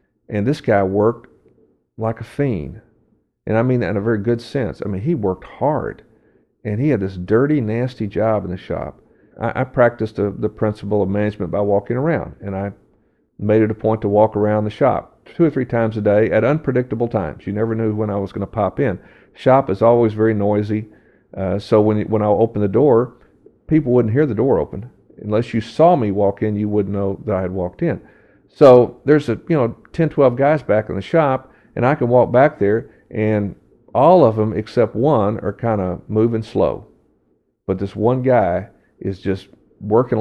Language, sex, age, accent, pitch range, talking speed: English, male, 50-69, American, 100-120 Hz, 210 wpm